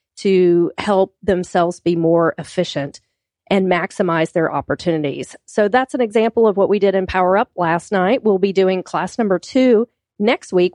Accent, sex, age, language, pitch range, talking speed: American, female, 40-59, English, 180-215 Hz, 175 wpm